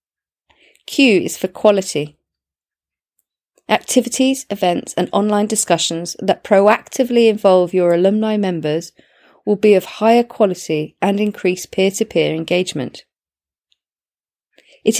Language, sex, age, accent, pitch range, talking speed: English, female, 30-49, British, 170-225 Hz, 100 wpm